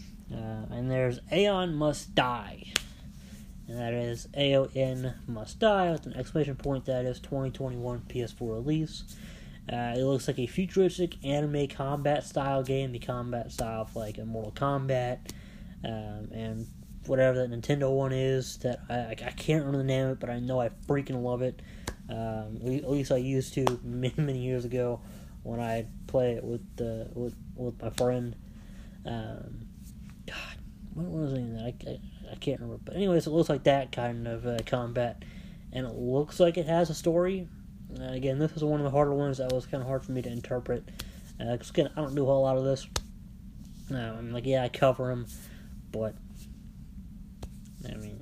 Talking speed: 190 wpm